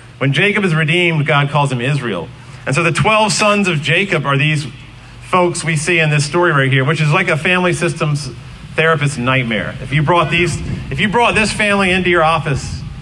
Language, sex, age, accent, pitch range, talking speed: English, male, 40-59, American, 125-165 Hz, 205 wpm